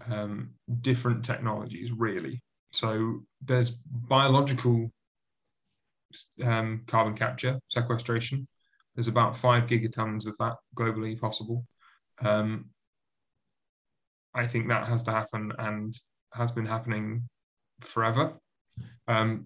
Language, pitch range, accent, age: English, 110-125 Hz, British, 20-39